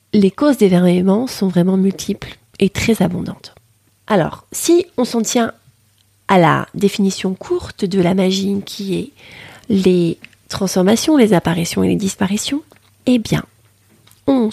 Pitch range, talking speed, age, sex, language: 160-220 Hz, 140 wpm, 30-49, female, French